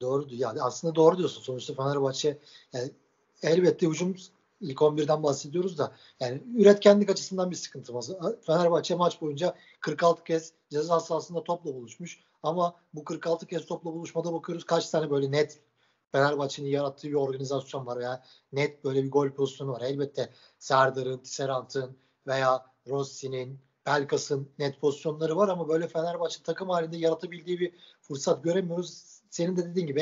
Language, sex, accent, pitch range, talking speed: Turkish, male, native, 140-175 Hz, 145 wpm